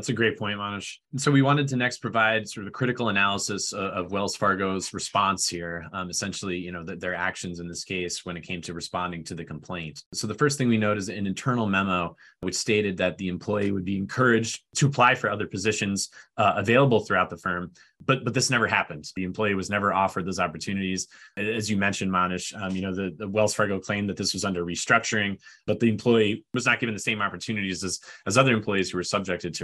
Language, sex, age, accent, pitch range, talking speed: English, male, 20-39, American, 90-110 Hz, 235 wpm